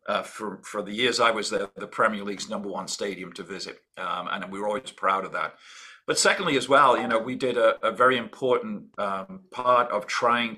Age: 50-69